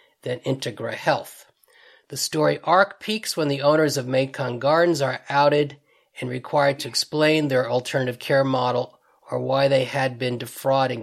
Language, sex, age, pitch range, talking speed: English, male, 40-59, 125-145 Hz, 160 wpm